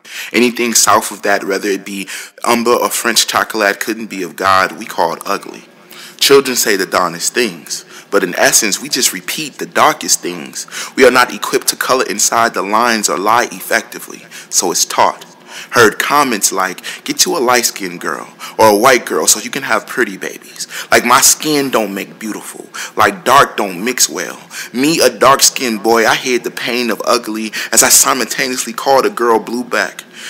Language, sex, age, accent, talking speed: English, male, 20-39, American, 190 wpm